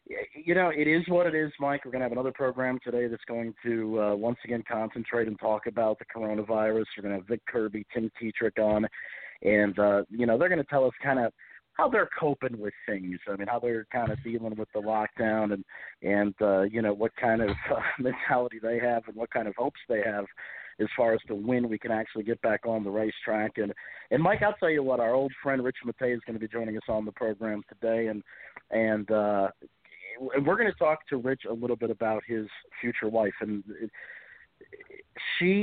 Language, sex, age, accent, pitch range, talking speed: English, male, 40-59, American, 105-125 Hz, 225 wpm